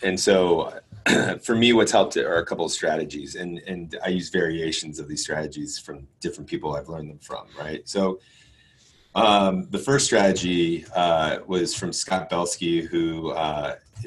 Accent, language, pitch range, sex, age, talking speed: American, English, 80-95 Hz, male, 30-49, 165 wpm